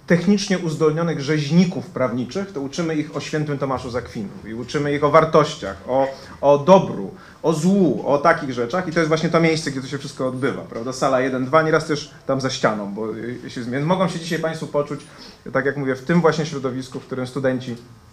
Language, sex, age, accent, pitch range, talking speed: Polish, male, 30-49, native, 130-175 Hz, 205 wpm